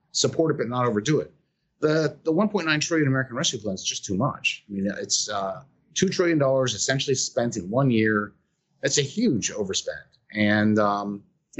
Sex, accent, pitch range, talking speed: male, American, 105-150 Hz, 175 wpm